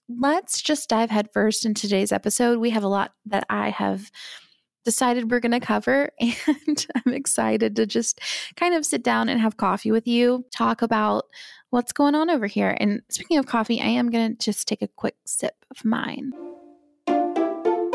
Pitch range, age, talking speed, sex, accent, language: 210-275 Hz, 20-39, 185 wpm, female, American, English